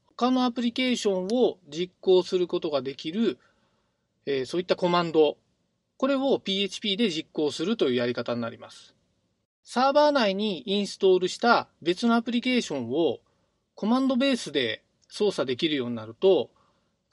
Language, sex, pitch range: Japanese, male, 155-235 Hz